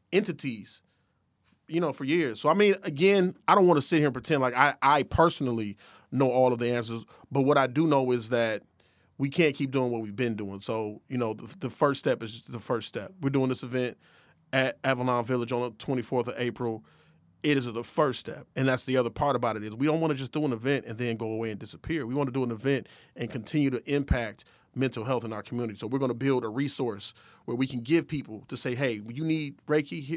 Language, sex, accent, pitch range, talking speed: English, male, American, 120-150 Hz, 245 wpm